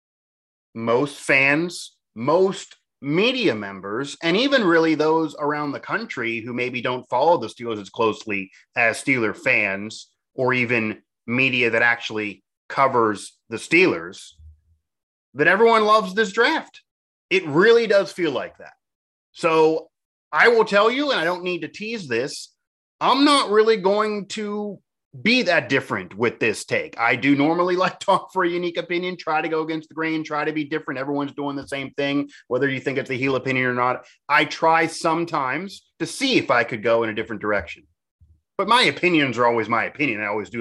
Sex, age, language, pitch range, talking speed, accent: male, 30-49, English, 115-170 Hz, 180 wpm, American